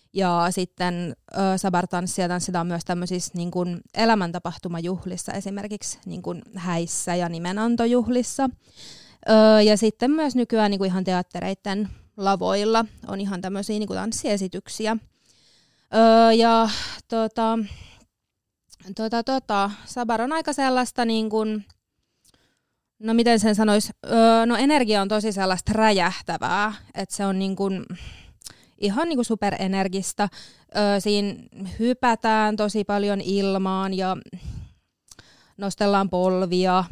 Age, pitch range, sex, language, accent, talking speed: 20-39, 185-220 Hz, female, Finnish, native, 110 wpm